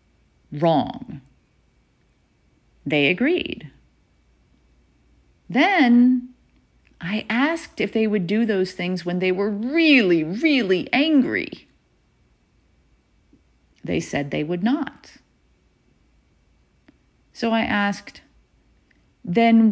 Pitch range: 165-245 Hz